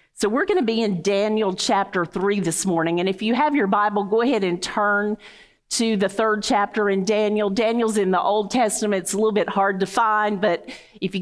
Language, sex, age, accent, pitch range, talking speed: English, female, 50-69, American, 190-230 Hz, 225 wpm